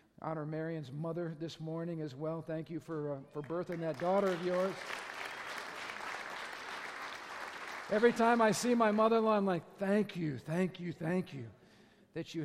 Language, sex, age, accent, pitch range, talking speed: English, male, 50-69, American, 145-180 Hz, 160 wpm